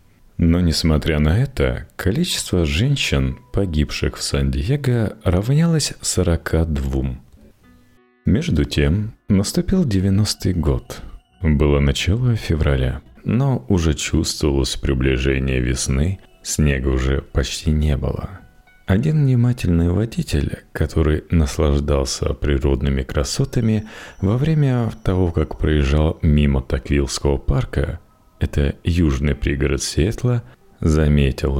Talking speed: 95 wpm